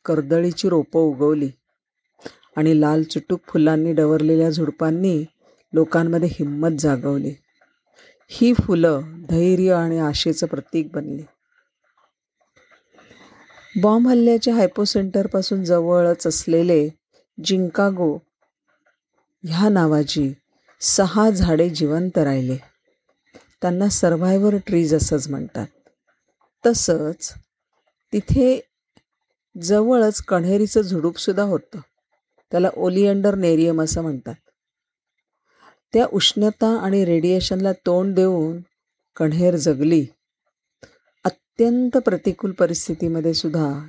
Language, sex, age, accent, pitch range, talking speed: Marathi, female, 40-59, native, 160-195 Hz, 80 wpm